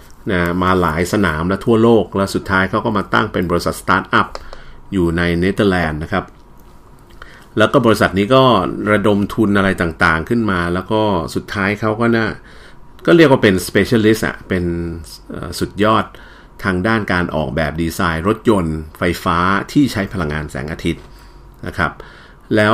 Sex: male